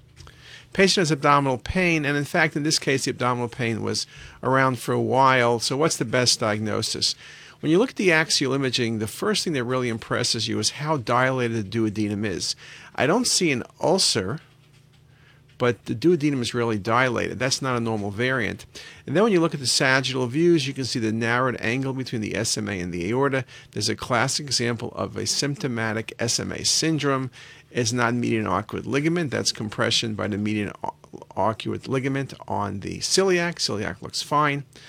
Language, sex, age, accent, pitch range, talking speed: English, male, 50-69, American, 115-145 Hz, 185 wpm